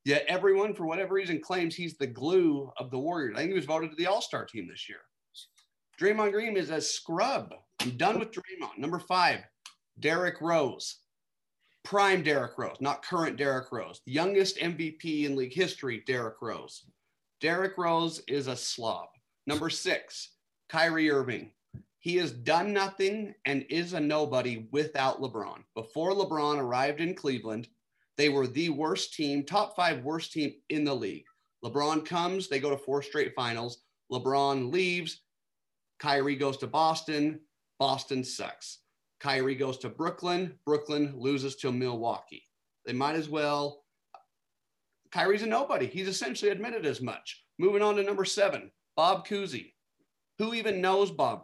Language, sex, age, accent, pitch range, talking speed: English, male, 40-59, American, 140-190 Hz, 155 wpm